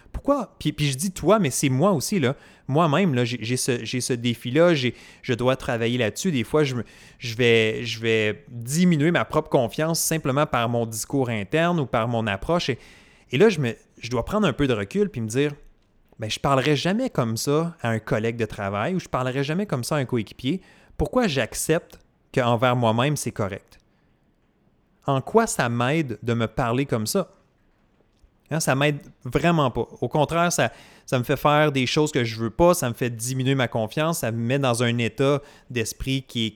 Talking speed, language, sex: 200 wpm, French, male